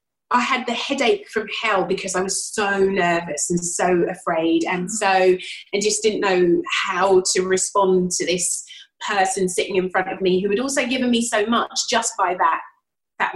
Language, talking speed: English, 190 wpm